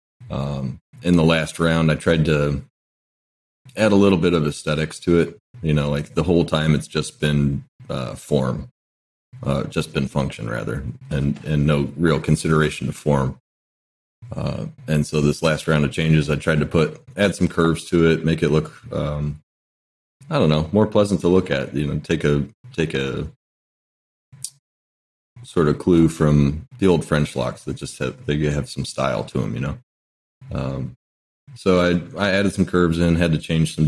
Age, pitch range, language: 30-49, 75-90 Hz, English